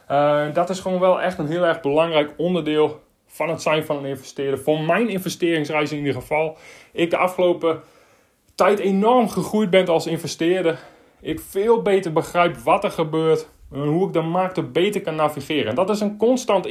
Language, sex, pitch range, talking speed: Dutch, male, 150-195 Hz, 185 wpm